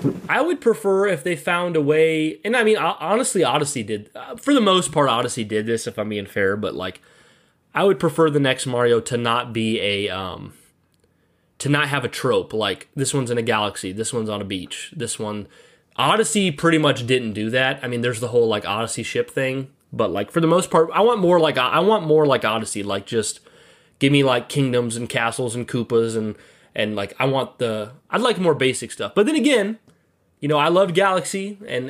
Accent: American